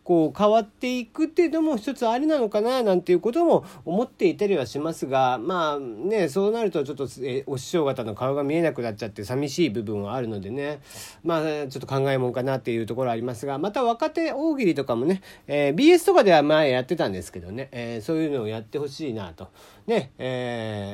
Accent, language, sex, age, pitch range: native, Japanese, male, 40-59, 120-180 Hz